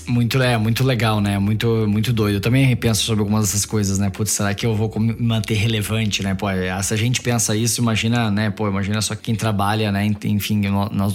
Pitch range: 105-120 Hz